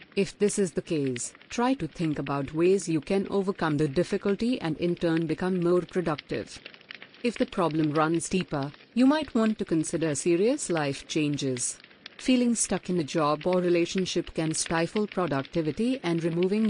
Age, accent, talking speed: 50-69, native, 165 wpm